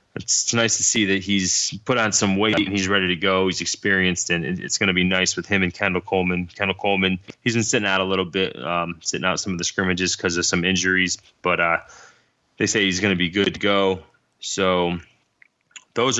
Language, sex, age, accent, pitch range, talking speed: English, male, 20-39, American, 90-100 Hz, 225 wpm